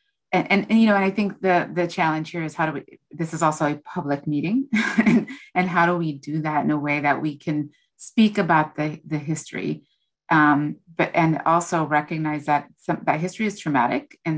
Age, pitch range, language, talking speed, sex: 30-49, 145-180 Hz, English, 215 wpm, female